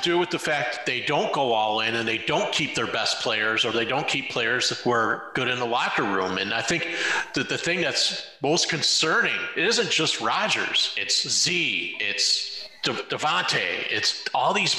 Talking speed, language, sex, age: 190 wpm, English, male, 40-59